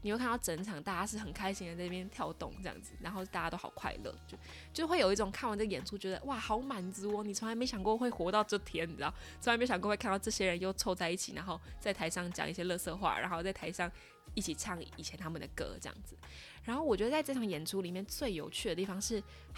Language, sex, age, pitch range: Chinese, female, 20-39, 175-215 Hz